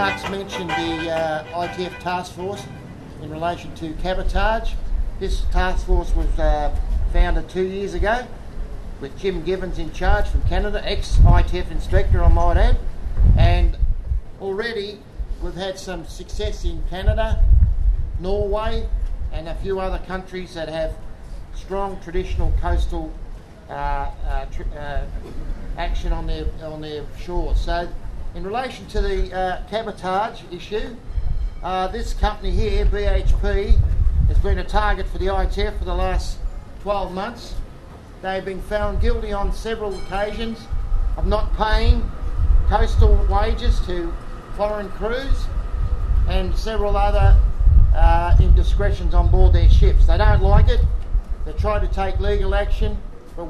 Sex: male